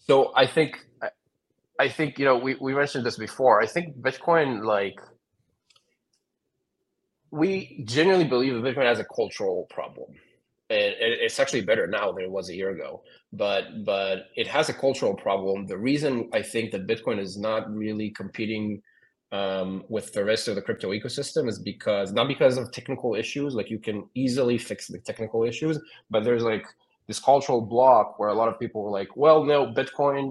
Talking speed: 180 wpm